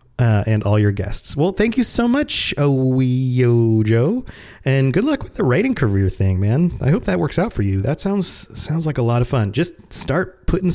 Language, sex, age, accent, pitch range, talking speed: English, male, 30-49, American, 105-140 Hz, 220 wpm